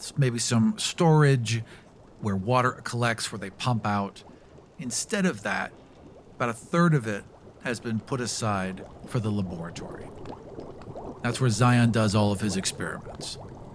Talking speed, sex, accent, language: 145 wpm, male, American, English